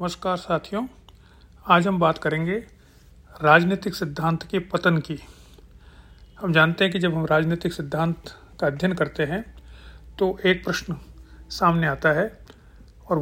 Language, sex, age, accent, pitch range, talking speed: Hindi, male, 40-59, native, 145-190 Hz, 135 wpm